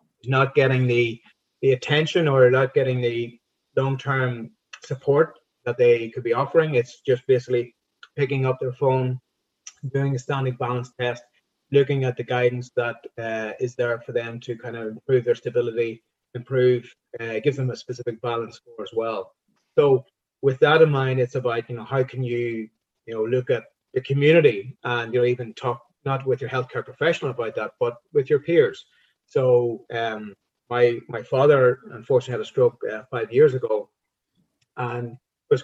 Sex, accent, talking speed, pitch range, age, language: male, Irish, 175 wpm, 120-155 Hz, 30-49, English